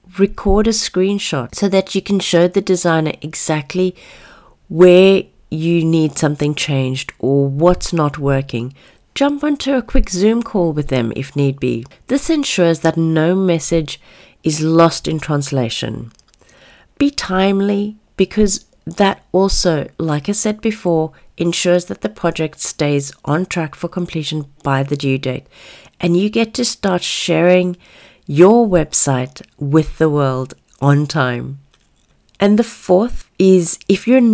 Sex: female